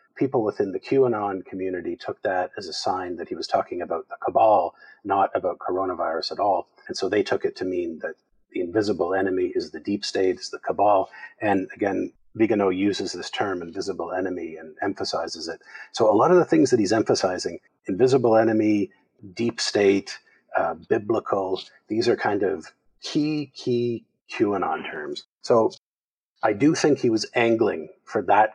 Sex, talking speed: male, 175 wpm